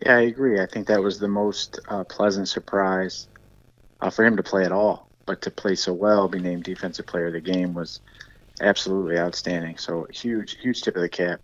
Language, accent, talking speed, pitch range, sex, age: English, American, 215 wpm, 90-100 Hz, male, 30-49